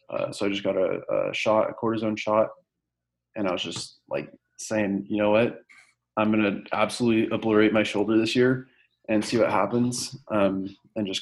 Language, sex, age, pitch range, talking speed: English, male, 20-39, 100-110 Hz, 195 wpm